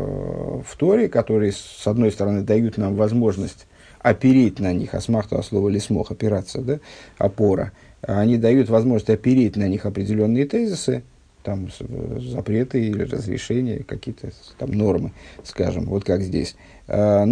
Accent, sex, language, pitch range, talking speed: native, male, Russian, 100-125 Hz, 130 wpm